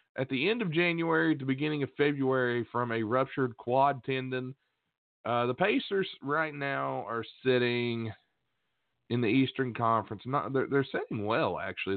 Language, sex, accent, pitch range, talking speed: English, male, American, 110-140 Hz, 155 wpm